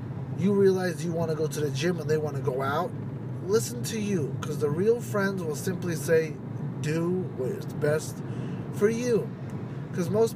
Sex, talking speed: male, 190 wpm